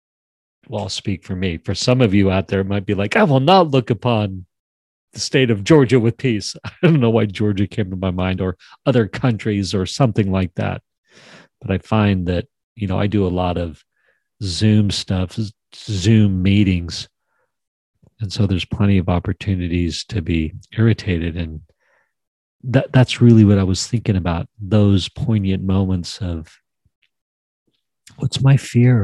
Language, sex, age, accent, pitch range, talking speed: English, male, 40-59, American, 95-120 Hz, 165 wpm